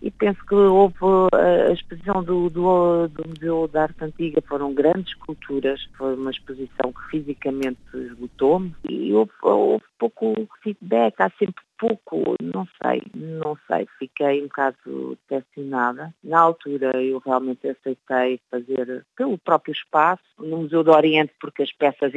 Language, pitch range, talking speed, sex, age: Portuguese, 135-180 Hz, 145 wpm, female, 50-69